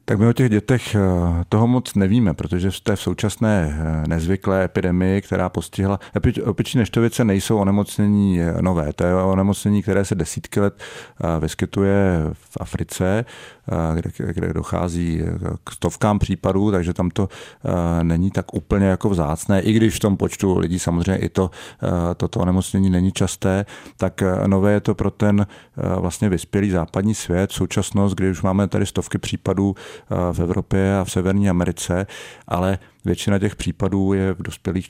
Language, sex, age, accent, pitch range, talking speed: Czech, male, 40-59, native, 90-100 Hz, 150 wpm